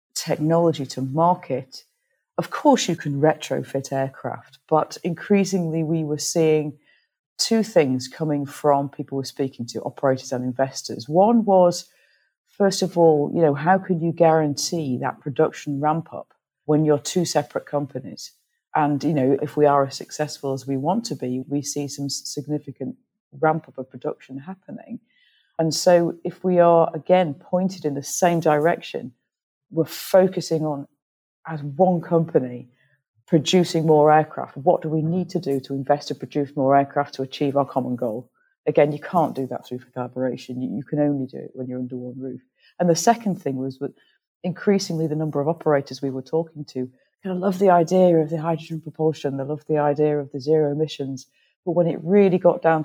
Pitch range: 135-170 Hz